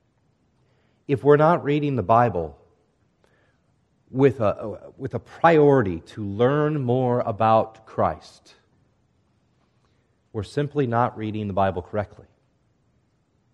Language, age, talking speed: English, 40-59, 100 wpm